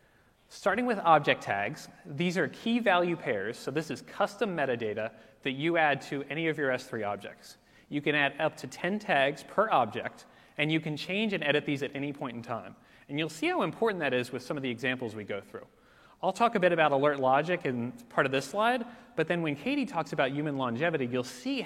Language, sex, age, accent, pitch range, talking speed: English, male, 30-49, American, 130-175 Hz, 225 wpm